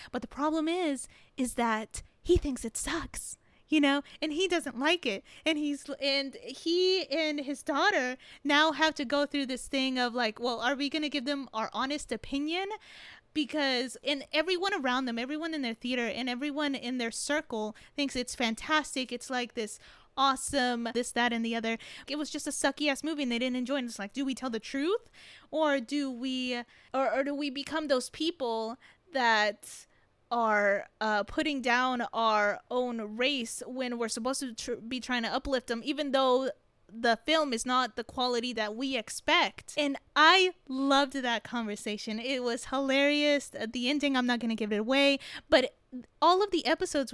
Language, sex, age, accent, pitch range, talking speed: English, female, 20-39, American, 240-290 Hz, 185 wpm